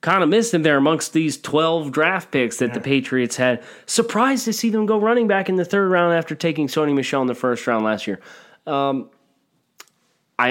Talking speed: 210 wpm